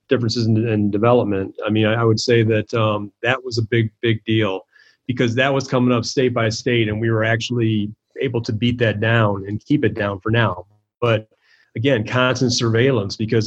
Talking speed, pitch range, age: 205 wpm, 110-120 Hz, 30-49